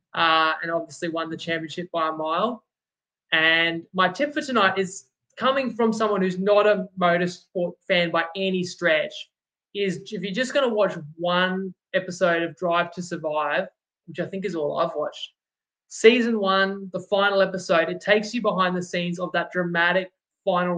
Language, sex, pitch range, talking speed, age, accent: English, male, 165-200 Hz, 175 wpm, 20-39, Australian